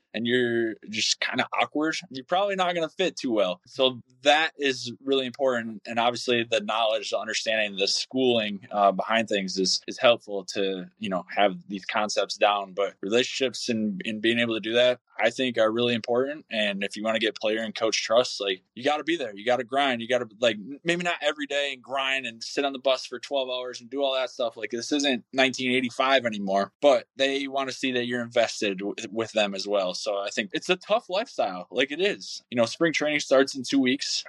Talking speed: 225 wpm